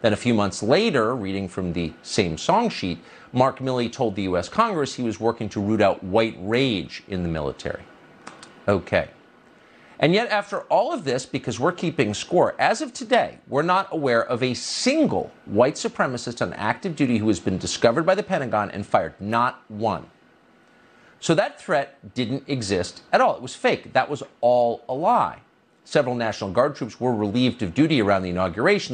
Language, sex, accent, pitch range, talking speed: English, male, American, 105-165 Hz, 185 wpm